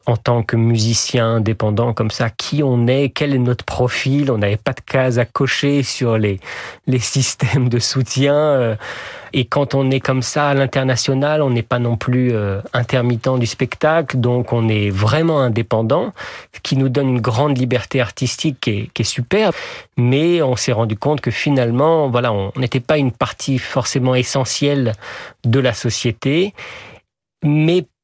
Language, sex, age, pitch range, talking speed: French, male, 40-59, 120-145 Hz, 170 wpm